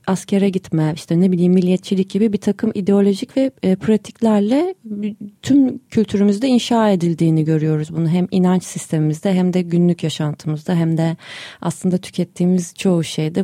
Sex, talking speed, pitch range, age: female, 140 wpm, 175-220 Hz, 30-49